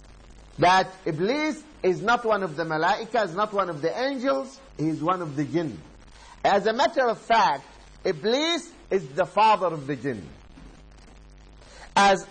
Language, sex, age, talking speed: English, male, 50-69, 160 wpm